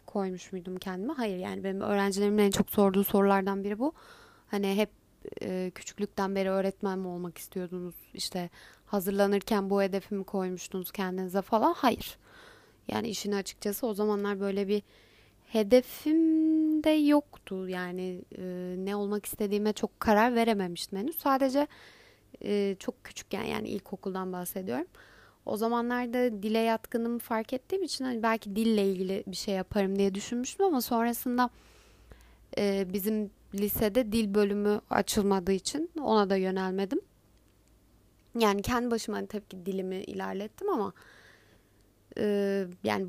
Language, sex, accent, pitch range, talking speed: Turkish, female, native, 190-230 Hz, 130 wpm